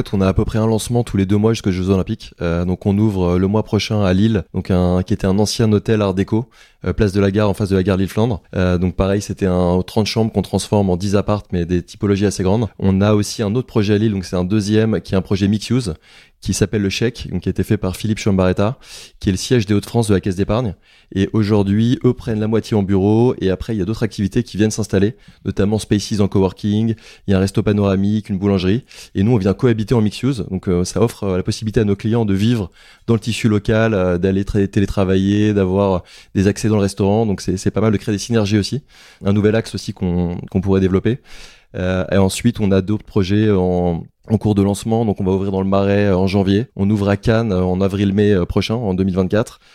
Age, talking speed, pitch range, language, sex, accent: 20-39, 255 wpm, 95-110 Hz, French, male, French